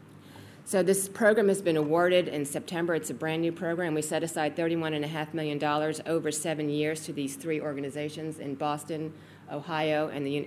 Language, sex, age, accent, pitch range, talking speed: English, female, 40-59, American, 145-170 Hz, 165 wpm